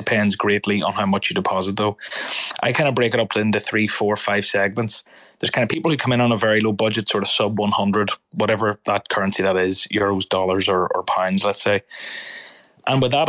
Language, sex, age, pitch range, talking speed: English, male, 20-39, 100-115 Hz, 225 wpm